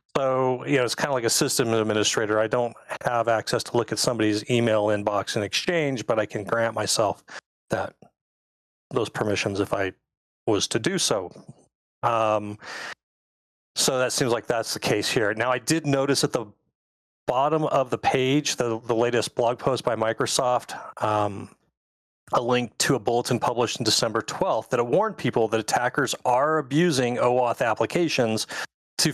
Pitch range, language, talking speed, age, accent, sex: 110-130 Hz, English, 170 wpm, 40-59, American, male